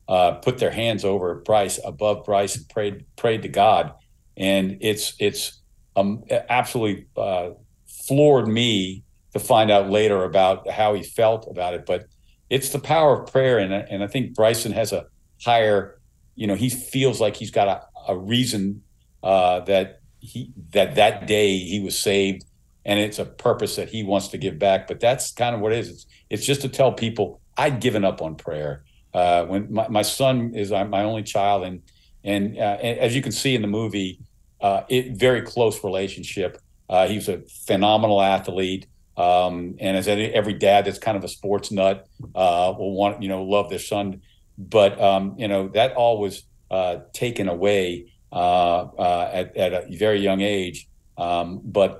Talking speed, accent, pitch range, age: 185 wpm, American, 95-115 Hz, 50-69